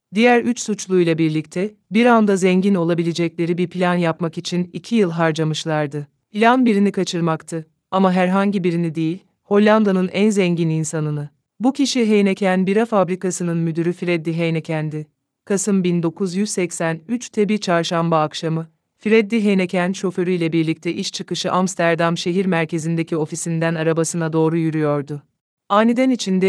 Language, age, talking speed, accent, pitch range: Polish, 30-49, 120 wpm, Turkish, 165-195 Hz